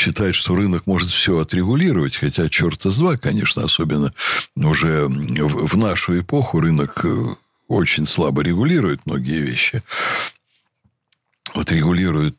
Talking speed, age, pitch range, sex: 105 wpm, 60-79, 80-110 Hz, male